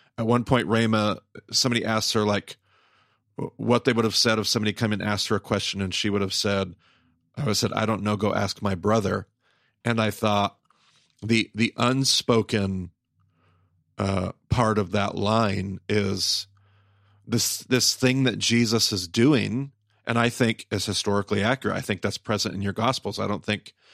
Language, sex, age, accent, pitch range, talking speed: English, male, 40-59, American, 105-120 Hz, 180 wpm